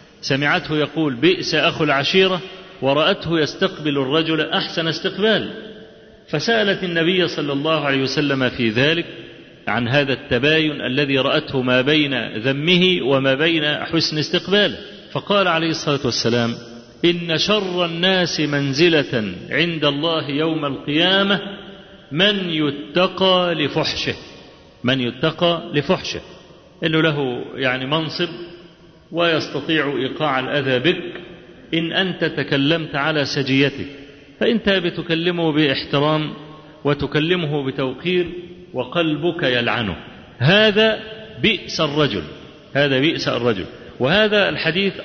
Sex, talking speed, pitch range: male, 100 wpm, 145-180 Hz